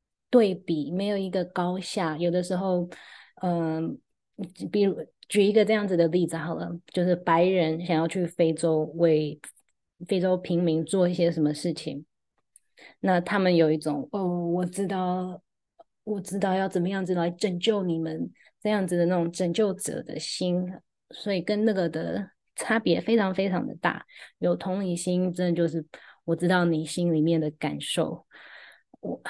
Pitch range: 160-190 Hz